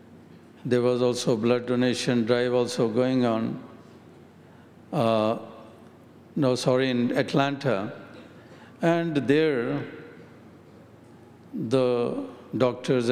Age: 60-79